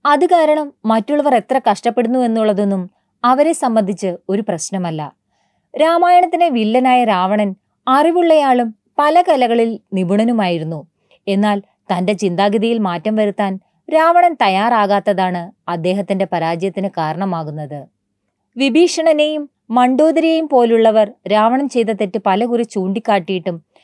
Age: 30-49